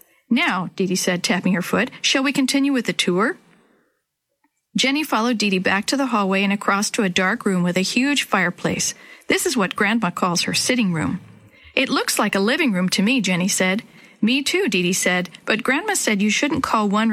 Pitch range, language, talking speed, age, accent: 190-255 Hz, English, 205 wpm, 50-69, American